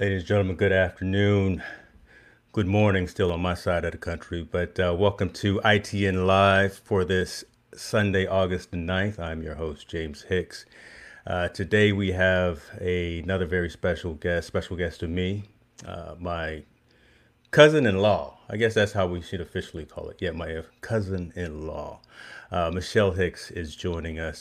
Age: 30-49